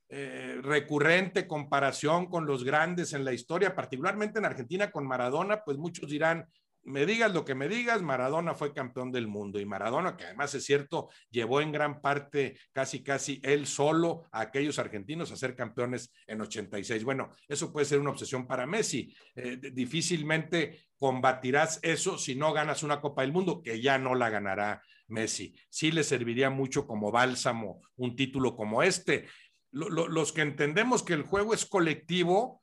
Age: 50-69